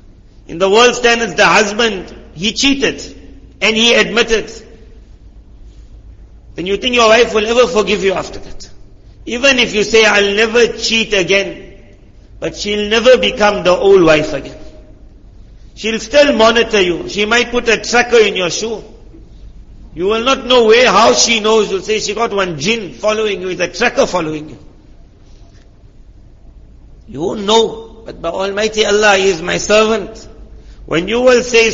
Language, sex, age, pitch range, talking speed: English, male, 50-69, 180-225 Hz, 165 wpm